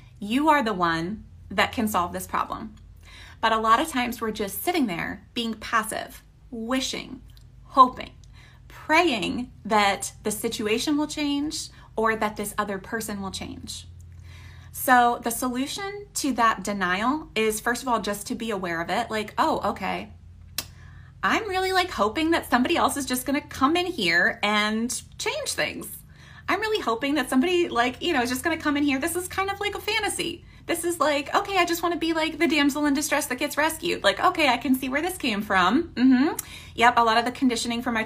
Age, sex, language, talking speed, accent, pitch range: 20-39, female, English, 200 wpm, American, 215-310 Hz